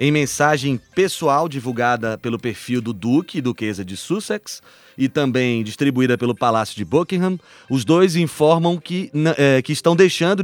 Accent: Brazilian